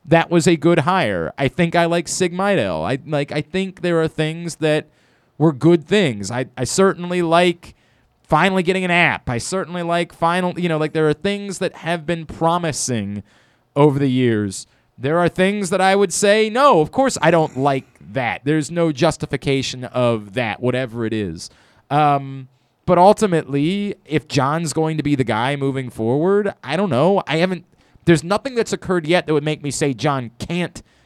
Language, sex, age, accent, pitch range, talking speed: English, male, 30-49, American, 130-175 Hz, 185 wpm